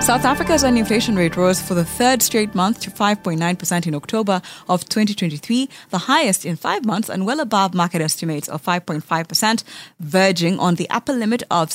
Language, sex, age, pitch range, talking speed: English, female, 20-39, 165-215 Hz, 175 wpm